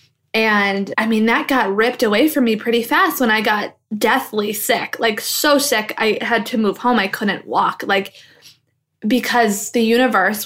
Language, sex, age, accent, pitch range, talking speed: English, female, 20-39, American, 205-255 Hz, 180 wpm